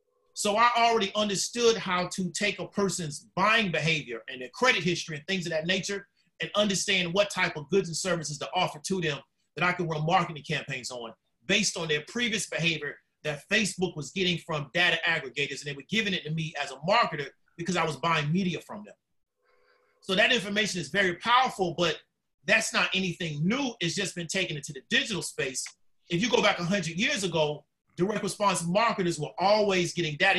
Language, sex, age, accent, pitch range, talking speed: English, male, 30-49, American, 160-205 Hz, 200 wpm